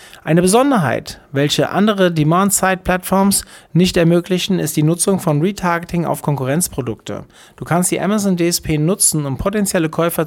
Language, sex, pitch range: German, male, 140-185 Hz